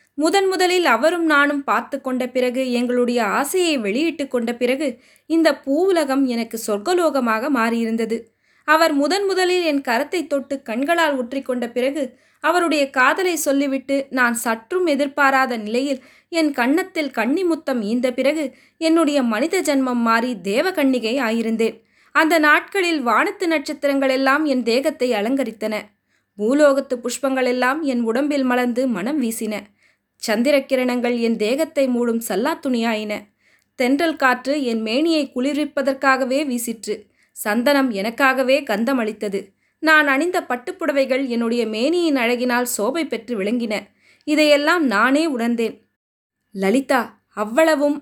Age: 20-39